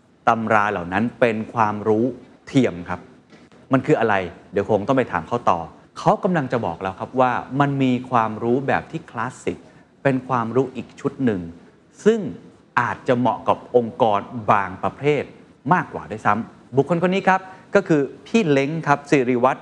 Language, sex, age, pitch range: Thai, male, 30-49, 110-150 Hz